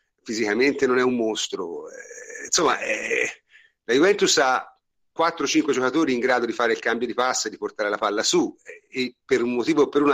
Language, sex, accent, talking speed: Italian, male, native, 205 wpm